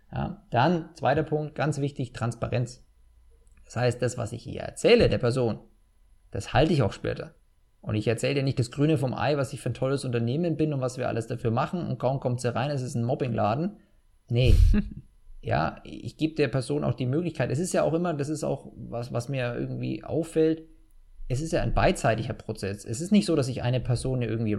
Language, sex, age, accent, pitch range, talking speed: German, male, 20-39, German, 115-155 Hz, 215 wpm